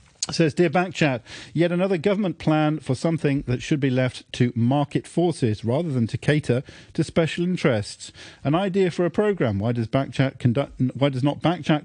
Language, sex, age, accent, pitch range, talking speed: English, male, 40-59, British, 120-150 Hz, 180 wpm